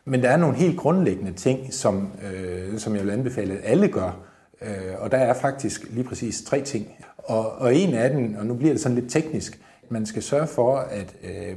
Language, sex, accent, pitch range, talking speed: Danish, male, native, 100-135 Hz, 225 wpm